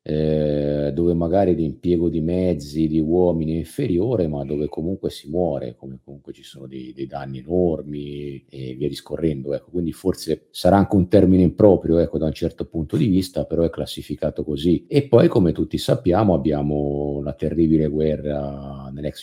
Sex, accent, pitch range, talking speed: male, native, 75-90 Hz, 170 wpm